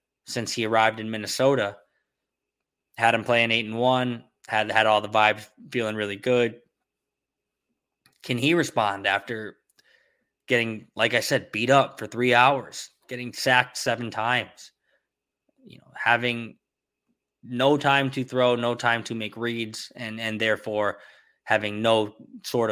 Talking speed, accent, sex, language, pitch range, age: 145 wpm, American, male, English, 110-140 Hz, 20-39